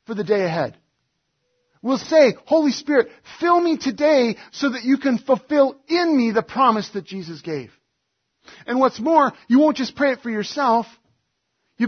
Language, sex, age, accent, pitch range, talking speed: English, male, 40-59, American, 190-275 Hz, 170 wpm